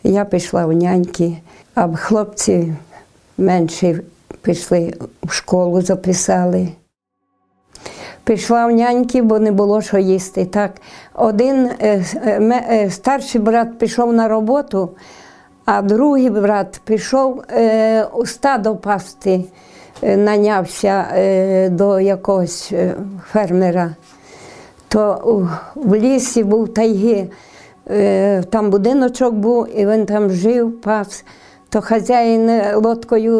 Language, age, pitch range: Ukrainian, 50-69, 190-220 Hz